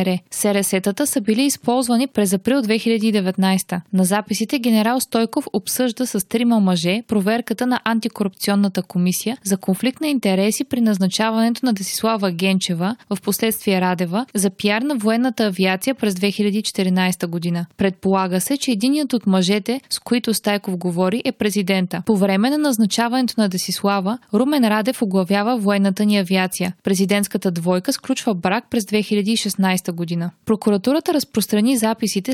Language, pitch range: Bulgarian, 195-235 Hz